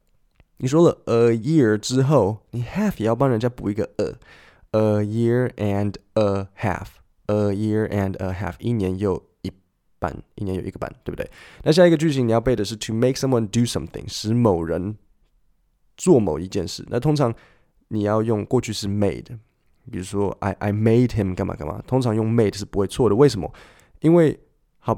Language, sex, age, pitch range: Chinese, male, 20-39, 100-120 Hz